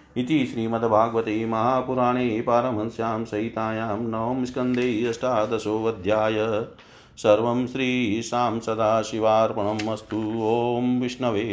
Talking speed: 65 wpm